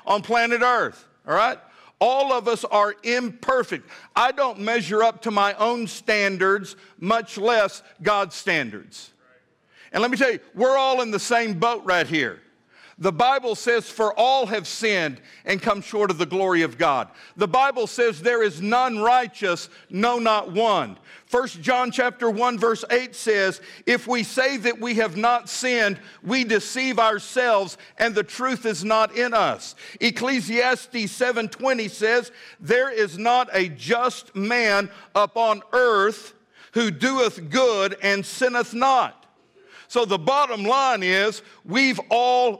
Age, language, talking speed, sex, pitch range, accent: 50-69, English, 155 wpm, male, 200-245 Hz, American